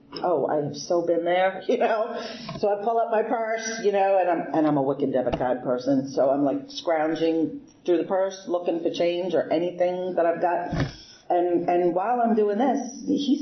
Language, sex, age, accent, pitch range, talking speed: English, female, 40-59, American, 150-205 Hz, 205 wpm